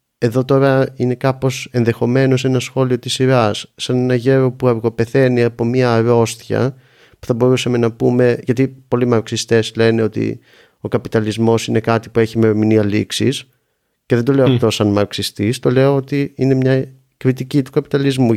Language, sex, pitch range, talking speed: Greek, male, 115-145 Hz, 165 wpm